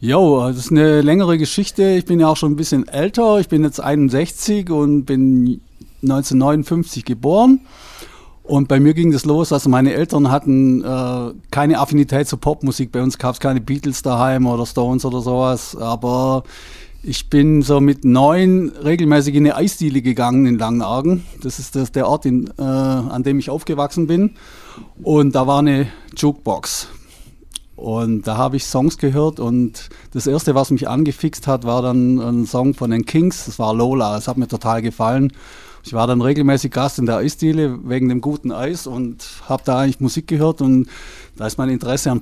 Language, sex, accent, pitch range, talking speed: German, male, German, 125-150 Hz, 185 wpm